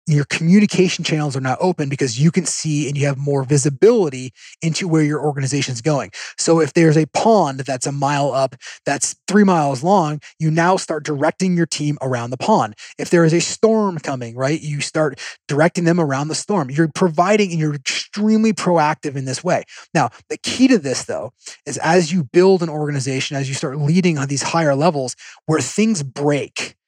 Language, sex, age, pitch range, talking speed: English, male, 30-49, 140-175 Hz, 200 wpm